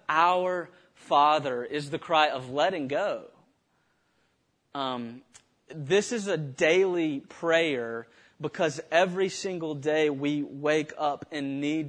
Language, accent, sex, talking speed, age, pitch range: English, American, male, 115 wpm, 30-49, 120-150 Hz